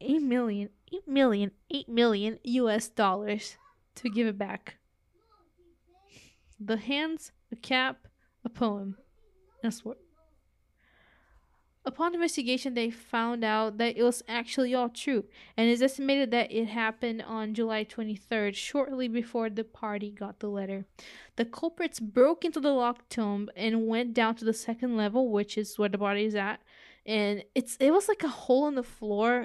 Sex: female